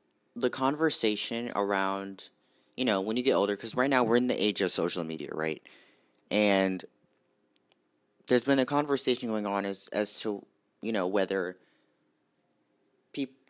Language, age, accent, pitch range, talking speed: English, 30-49, American, 90-115 Hz, 150 wpm